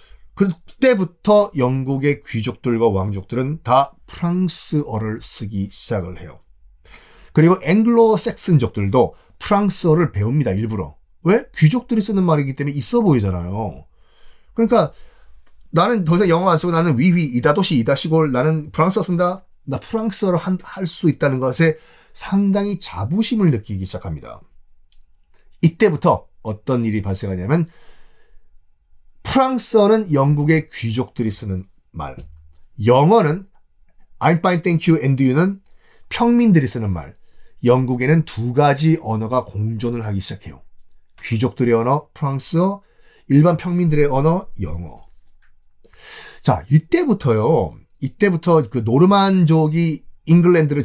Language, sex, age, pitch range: Korean, male, 30-49, 115-180 Hz